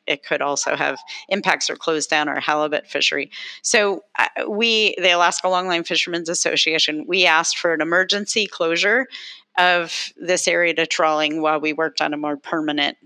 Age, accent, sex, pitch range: 40-59, American, female, 155-185 Hz